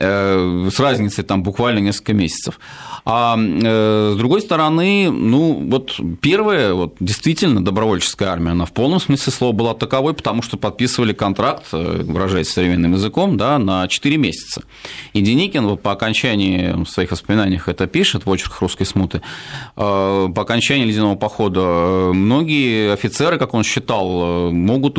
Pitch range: 90-125 Hz